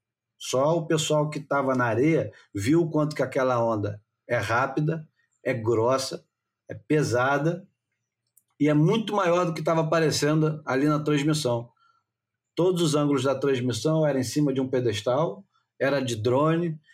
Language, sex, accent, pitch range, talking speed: Portuguese, male, Brazilian, 120-155 Hz, 155 wpm